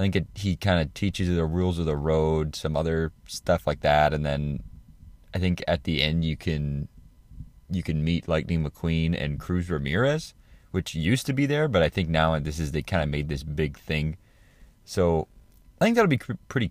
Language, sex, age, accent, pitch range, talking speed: English, male, 20-39, American, 80-105 Hz, 215 wpm